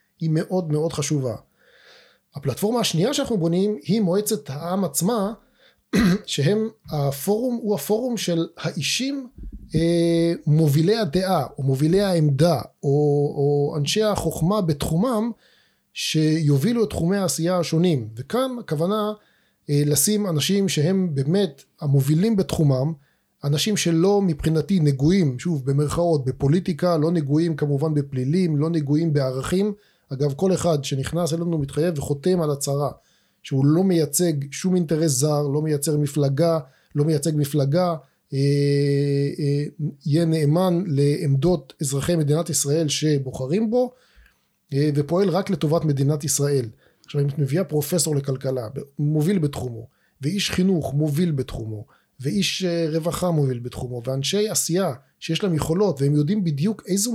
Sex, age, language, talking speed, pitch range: male, 30-49, Hebrew, 125 wpm, 145-185 Hz